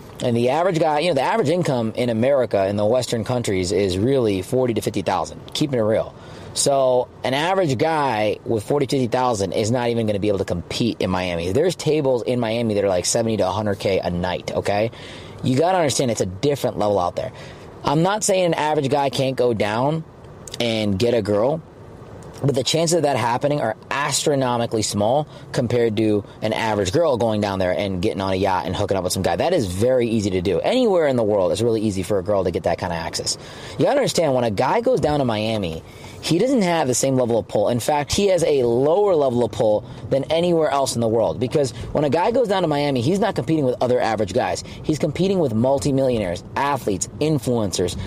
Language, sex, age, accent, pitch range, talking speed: English, male, 30-49, American, 110-145 Hz, 230 wpm